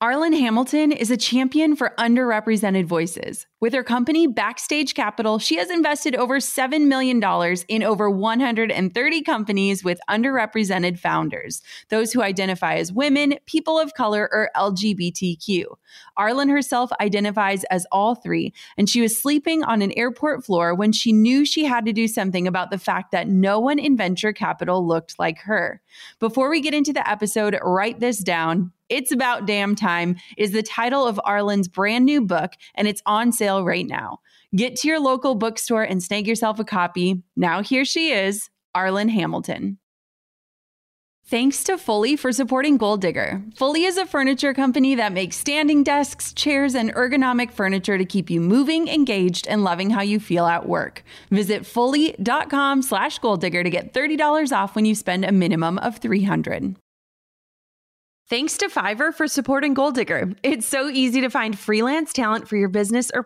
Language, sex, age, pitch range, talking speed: English, female, 20-39, 195-270 Hz, 170 wpm